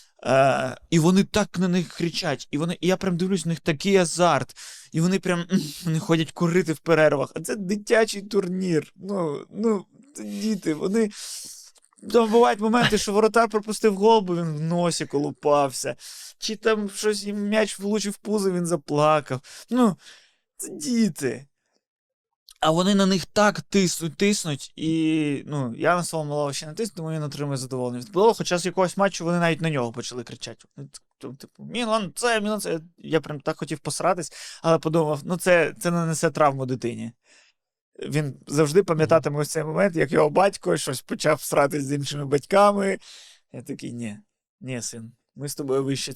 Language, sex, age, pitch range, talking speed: Ukrainian, male, 20-39, 145-200 Hz, 165 wpm